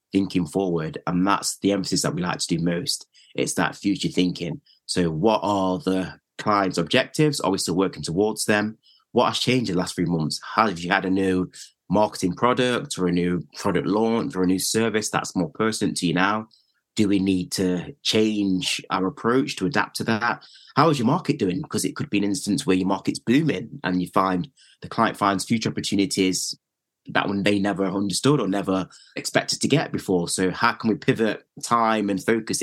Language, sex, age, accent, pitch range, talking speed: English, male, 30-49, British, 90-110 Hz, 205 wpm